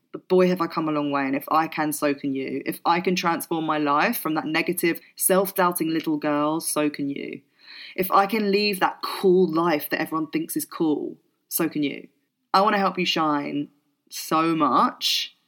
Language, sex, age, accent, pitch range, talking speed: English, female, 20-39, British, 155-190 Hz, 205 wpm